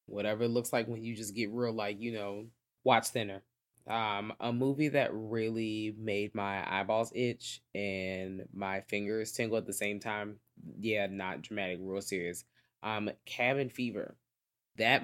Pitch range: 110-145 Hz